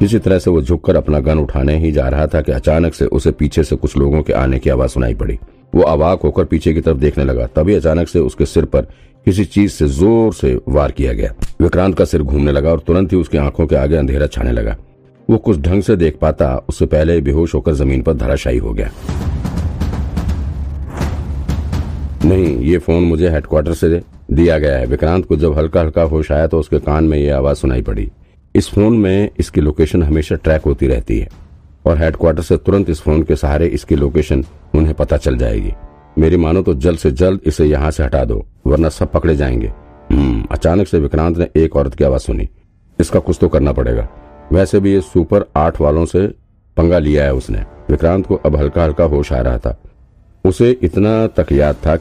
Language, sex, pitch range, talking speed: Hindi, male, 75-90 Hz, 210 wpm